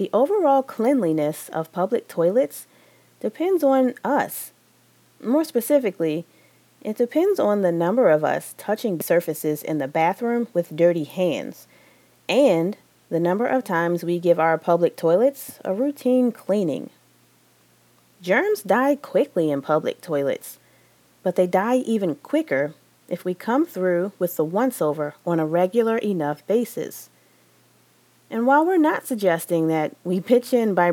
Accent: American